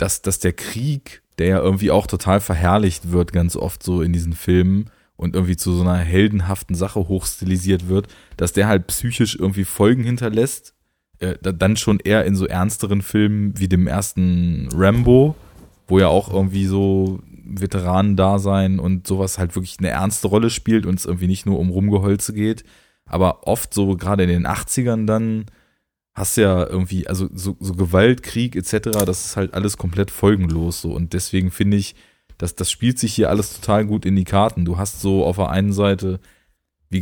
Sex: male